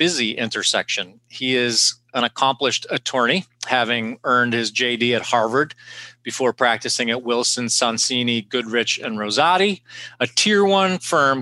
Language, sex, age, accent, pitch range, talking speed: English, male, 40-59, American, 115-135 Hz, 130 wpm